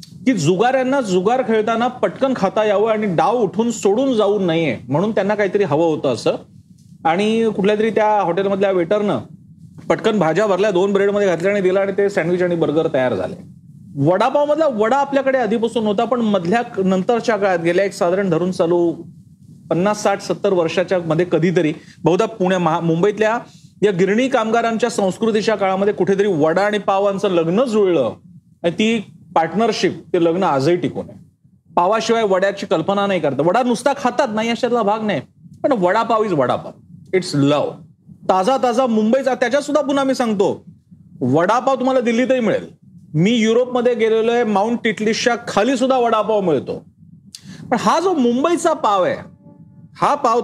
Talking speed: 155 wpm